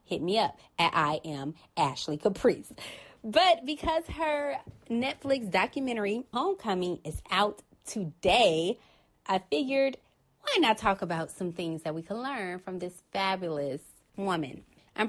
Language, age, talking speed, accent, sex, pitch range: English, 20-39, 135 wpm, American, female, 165-220 Hz